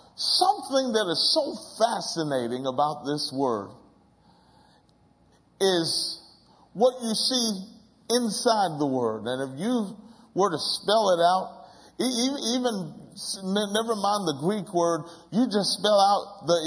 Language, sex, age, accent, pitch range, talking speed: English, male, 50-69, American, 175-210 Hz, 120 wpm